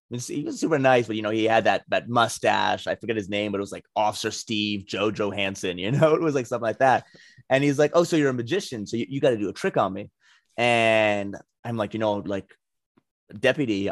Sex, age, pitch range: male, 30-49, 105-135 Hz